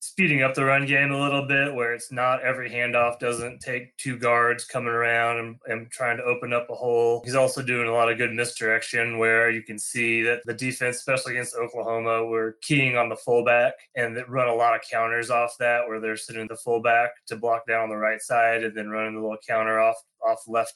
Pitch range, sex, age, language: 110-125 Hz, male, 20-39, English